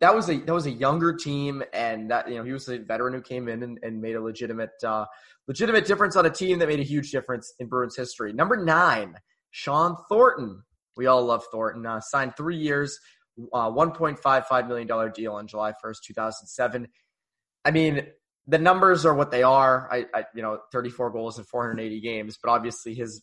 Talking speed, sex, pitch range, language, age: 220 wpm, male, 110-140 Hz, English, 20-39